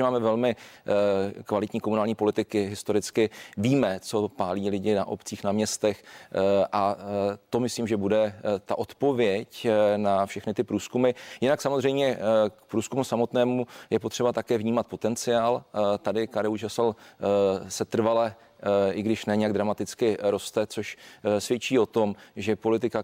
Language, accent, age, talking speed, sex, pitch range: Czech, native, 40-59, 135 wpm, male, 105-115 Hz